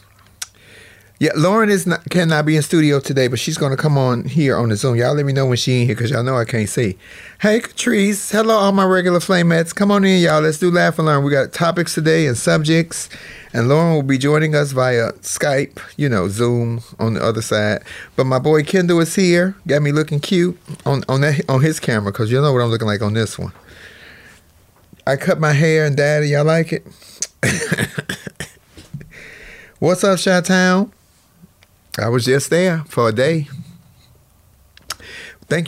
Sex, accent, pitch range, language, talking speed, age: male, American, 120-155 Hz, English, 195 wpm, 30-49